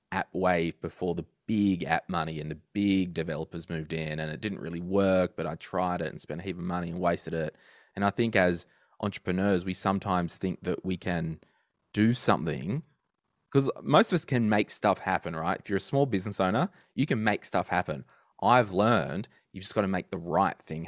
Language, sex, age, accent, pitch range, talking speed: English, male, 20-39, Australian, 80-95 Hz, 215 wpm